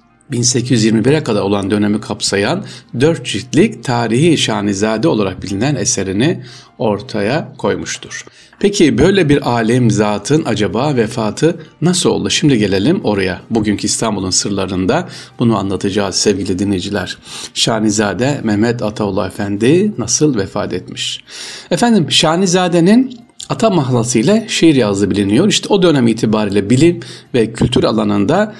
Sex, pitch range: male, 105-140 Hz